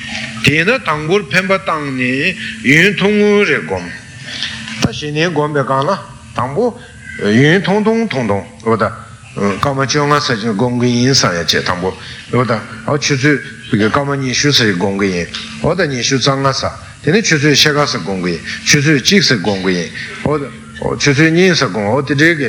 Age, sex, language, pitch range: 60-79, male, Italian, 115-160 Hz